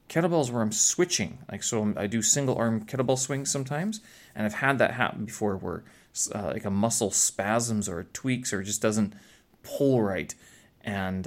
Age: 30-49